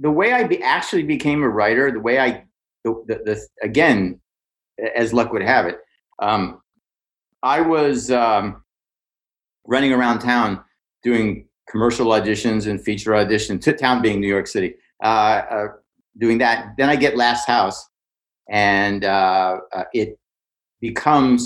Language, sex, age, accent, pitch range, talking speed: English, male, 50-69, American, 100-125 Hz, 150 wpm